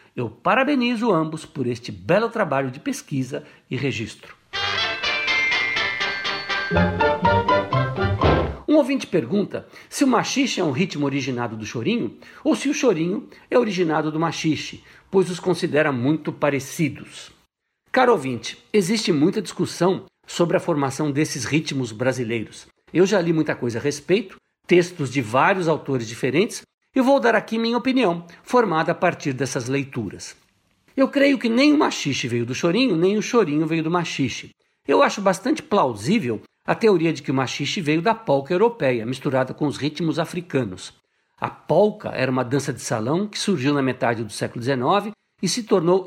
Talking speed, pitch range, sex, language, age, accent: 160 wpm, 135-200 Hz, male, Portuguese, 60-79, Brazilian